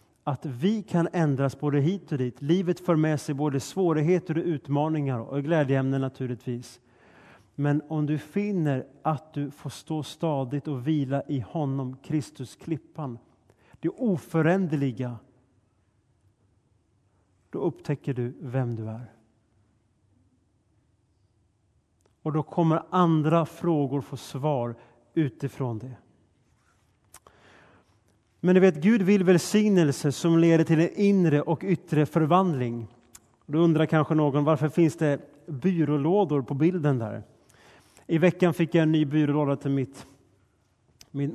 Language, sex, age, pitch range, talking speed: Swedish, male, 30-49, 120-160 Hz, 125 wpm